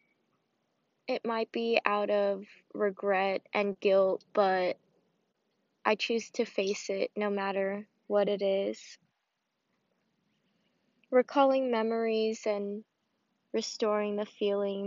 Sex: female